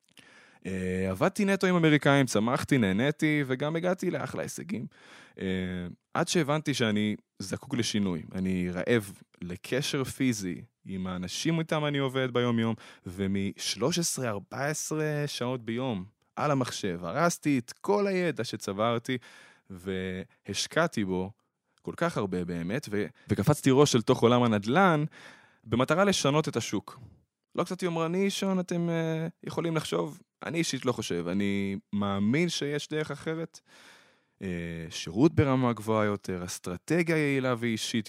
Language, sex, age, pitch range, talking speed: Hebrew, male, 20-39, 100-155 Hz, 120 wpm